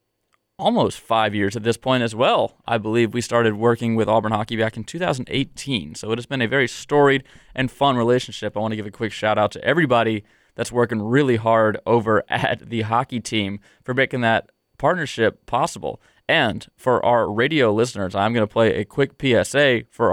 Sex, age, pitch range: male, 20-39, 110-125 Hz